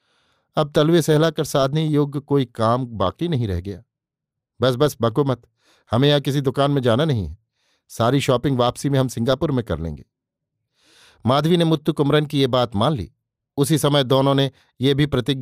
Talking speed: 150 wpm